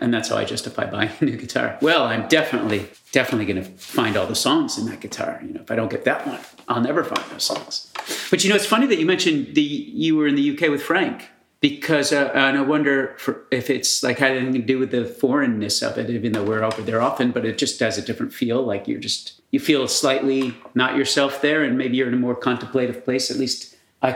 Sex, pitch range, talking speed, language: male, 115-140 Hz, 250 wpm, English